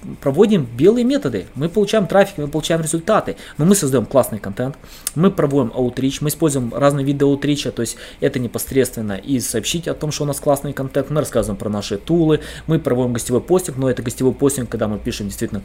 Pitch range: 120-150 Hz